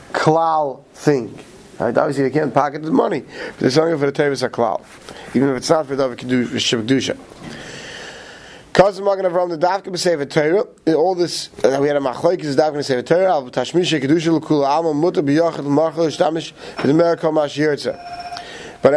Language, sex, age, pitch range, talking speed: English, male, 30-49, 140-180 Hz, 170 wpm